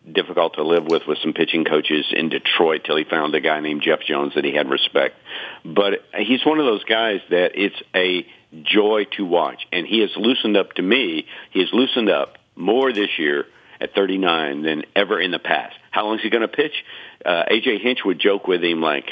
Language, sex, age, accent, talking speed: English, male, 50-69, American, 220 wpm